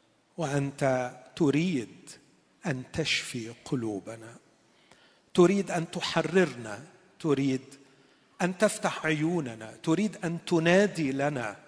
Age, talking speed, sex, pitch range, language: 40-59, 80 wpm, male, 130-170 Hz, Arabic